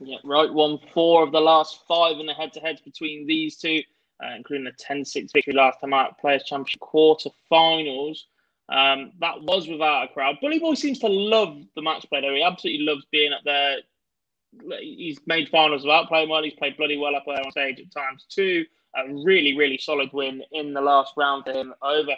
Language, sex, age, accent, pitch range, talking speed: English, male, 20-39, British, 140-160 Hz, 210 wpm